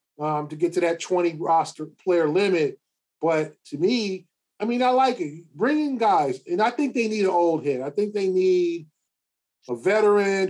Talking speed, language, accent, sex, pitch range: 190 wpm, English, American, male, 155-185 Hz